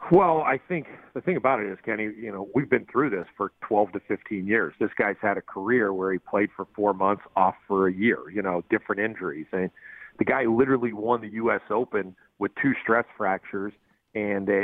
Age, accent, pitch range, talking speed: 40-59, American, 105-120 Hz, 215 wpm